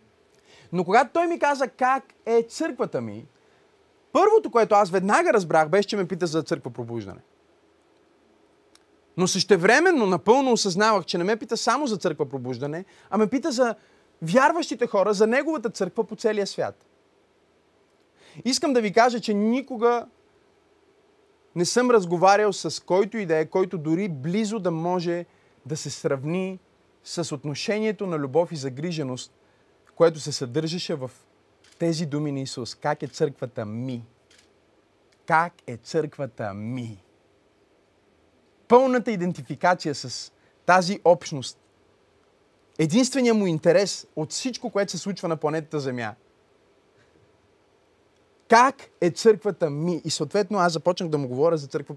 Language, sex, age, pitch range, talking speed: Bulgarian, male, 30-49, 150-225 Hz, 135 wpm